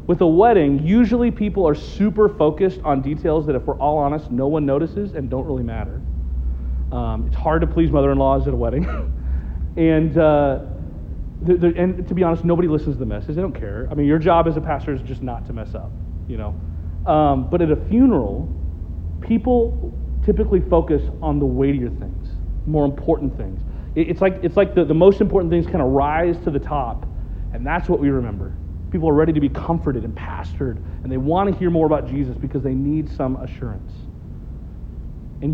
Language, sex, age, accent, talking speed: English, male, 40-59, American, 205 wpm